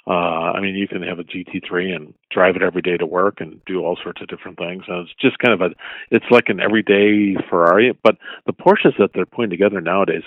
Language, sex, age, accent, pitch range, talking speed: English, male, 50-69, American, 90-110 Hz, 245 wpm